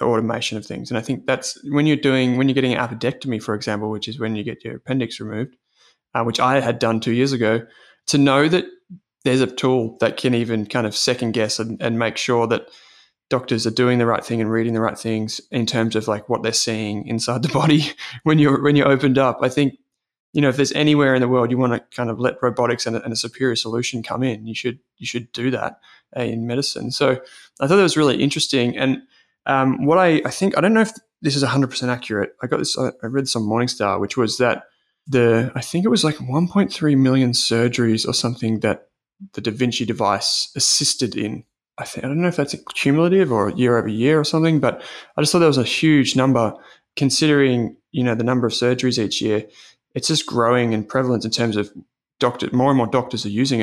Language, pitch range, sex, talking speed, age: English, 115-140 Hz, male, 235 wpm, 20-39